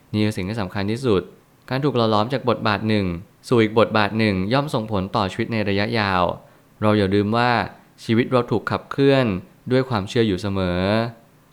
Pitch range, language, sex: 100-120 Hz, Thai, male